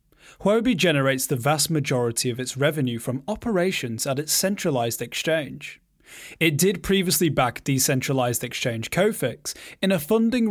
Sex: male